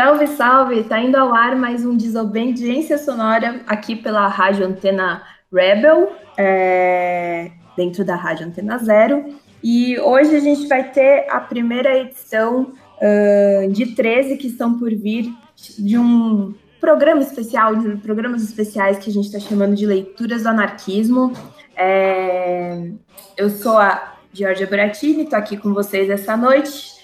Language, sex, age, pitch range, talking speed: Portuguese, female, 20-39, 195-240 Hz, 140 wpm